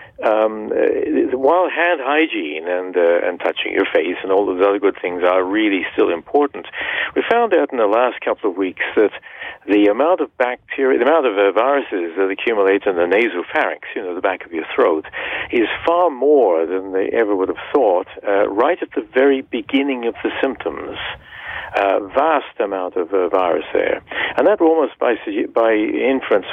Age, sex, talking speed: 50-69, male, 190 wpm